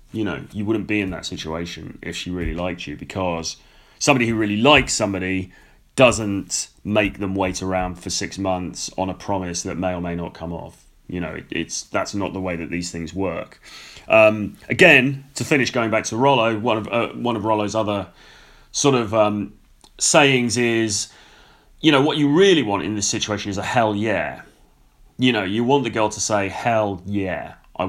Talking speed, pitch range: 200 wpm, 90-115 Hz